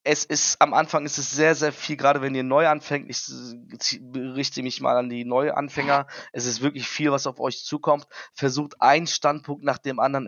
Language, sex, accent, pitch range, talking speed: German, male, German, 135-150 Hz, 205 wpm